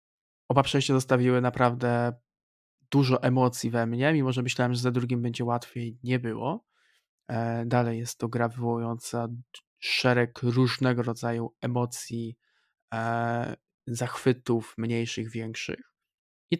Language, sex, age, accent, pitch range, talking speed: Polish, male, 20-39, native, 120-135 Hz, 110 wpm